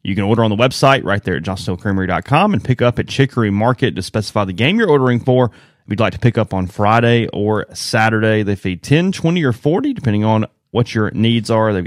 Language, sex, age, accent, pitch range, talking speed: English, male, 30-49, American, 100-125 Hz, 235 wpm